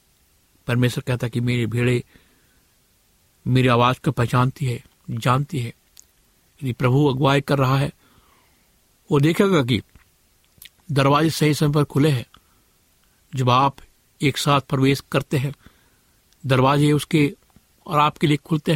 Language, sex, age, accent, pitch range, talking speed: Hindi, male, 60-79, native, 120-145 Hz, 130 wpm